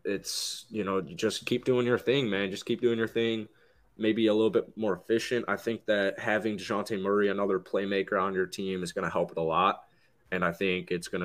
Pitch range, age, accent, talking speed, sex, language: 90-115 Hz, 20-39, American, 235 wpm, male, English